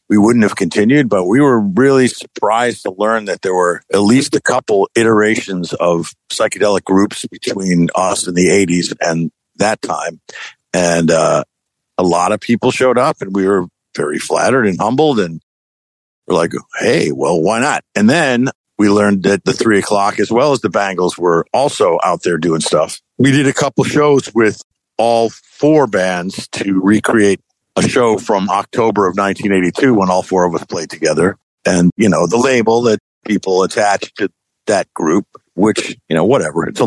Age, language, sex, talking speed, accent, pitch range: 50-69, English, male, 180 wpm, American, 90-115 Hz